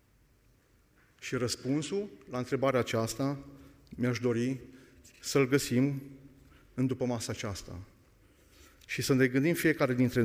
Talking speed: 110 wpm